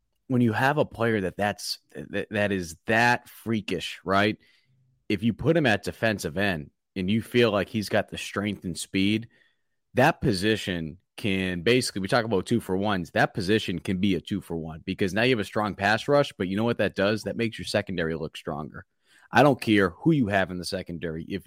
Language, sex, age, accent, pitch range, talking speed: English, male, 30-49, American, 95-115 Hz, 205 wpm